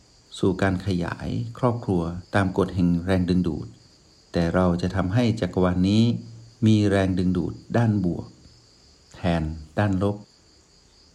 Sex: male